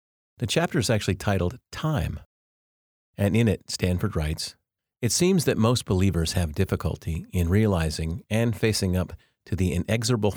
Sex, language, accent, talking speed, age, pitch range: male, English, American, 150 wpm, 40-59, 85-110 Hz